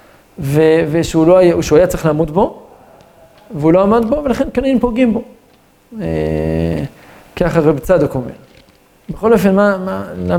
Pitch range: 145-210 Hz